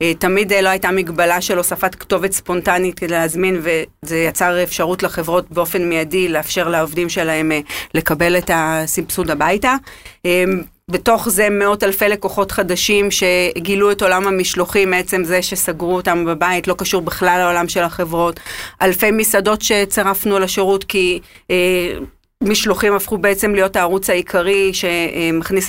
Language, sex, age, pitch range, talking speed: Hebrew, female, 30-49, 175-200 Hz, 130 wpm